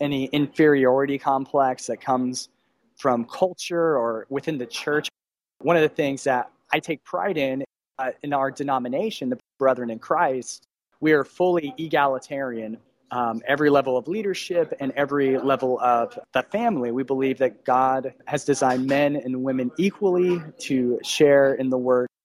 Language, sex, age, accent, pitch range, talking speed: English, male, 30-49, American, 125-145 Hz, 155 wpm